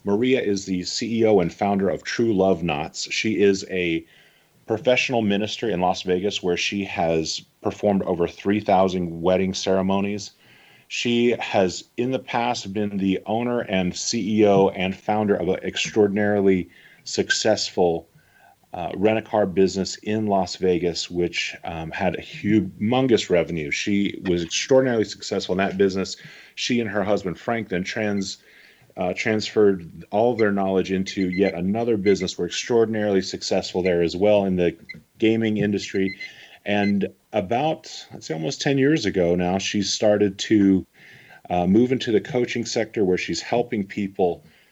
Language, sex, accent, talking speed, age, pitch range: English, male, American, 145 wpm, 30-49, 95-110 Hz